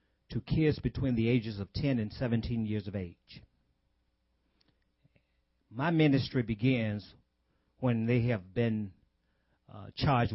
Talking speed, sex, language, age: 120 wpm, male, English, 50-69